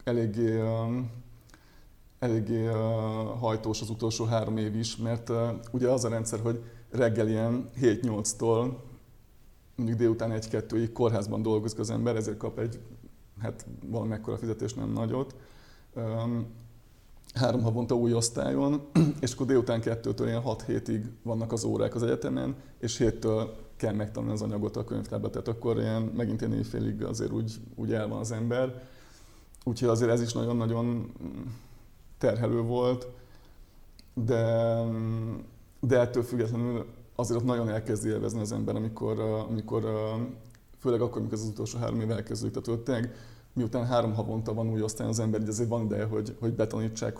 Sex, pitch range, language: male, 110-120 Hz, Hungarian